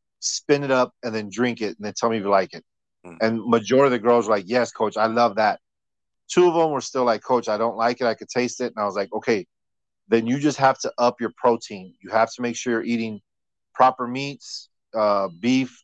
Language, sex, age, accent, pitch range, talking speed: English, male, 40-59, American, 105-125 Hz, 250 wpm